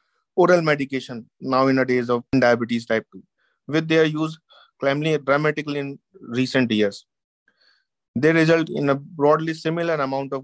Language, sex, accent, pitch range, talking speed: English, male, Indian, 130-155 Hz, 145 wpm